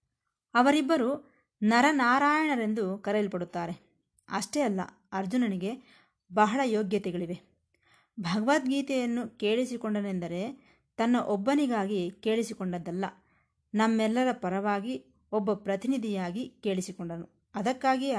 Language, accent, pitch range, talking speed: Kannada, native, 190-260 Hz, 65 wpm